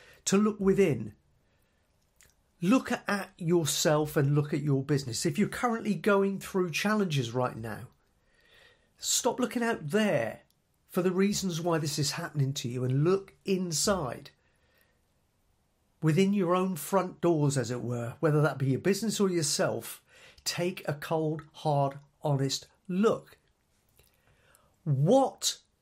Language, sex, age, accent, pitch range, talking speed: English, male, 40-59, British, 140-195 Hz, 130 wpm